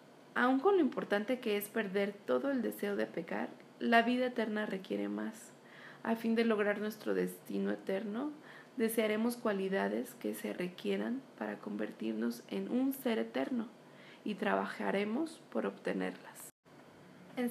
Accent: Mexican